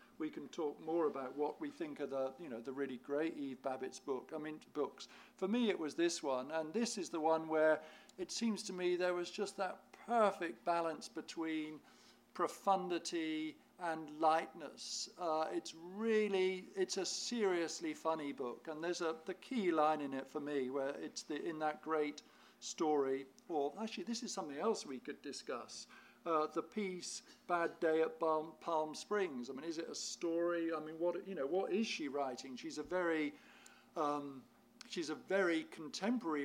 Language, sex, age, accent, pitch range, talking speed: English, male, 50-69, British, 155-195 Hz, 185 wpm